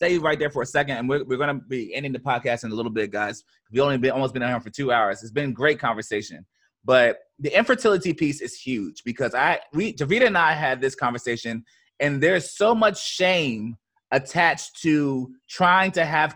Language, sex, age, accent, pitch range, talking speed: English, male, 20-39, American, 135-220 Hz, 215 wpm